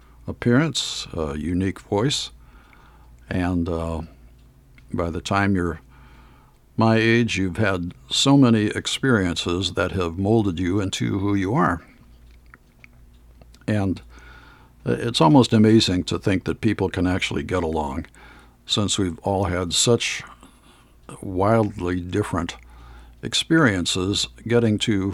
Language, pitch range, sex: English, 65-105 Hz, male